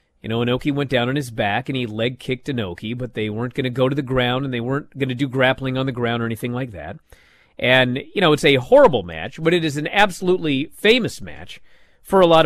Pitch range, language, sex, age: 120-160 Hz, English, male, 40-59